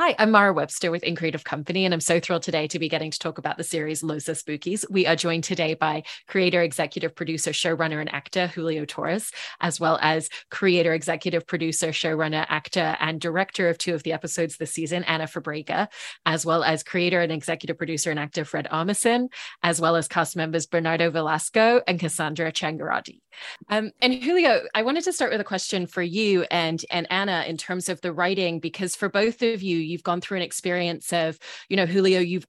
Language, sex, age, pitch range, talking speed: English, female, 30-49, 165-185 Hz, 205 wpm